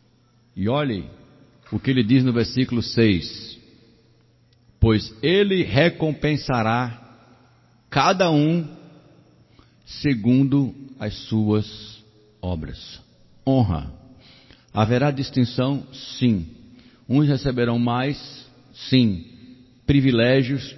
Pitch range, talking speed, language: 115-140 Hz, 80 wpm, Portuguese